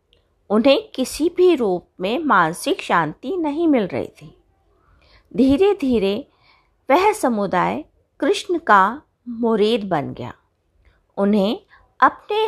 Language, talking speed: Hindi, 105 wpm